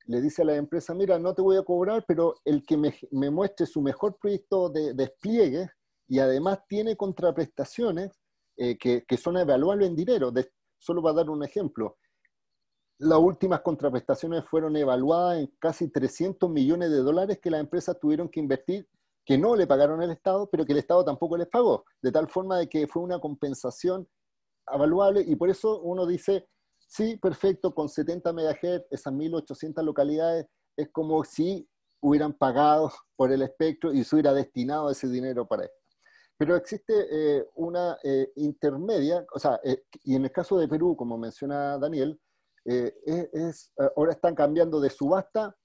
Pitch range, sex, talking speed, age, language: 140-180 Hz, male, 175 wpm, 40-59, Spanish